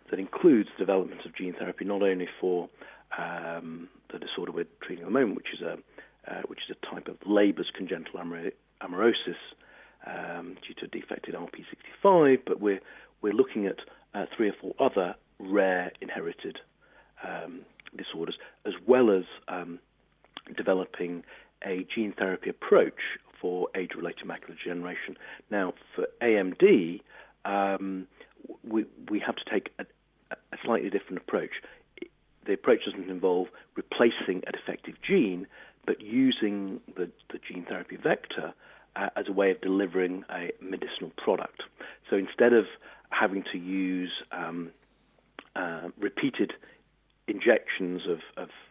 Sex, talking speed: male, 140 wpm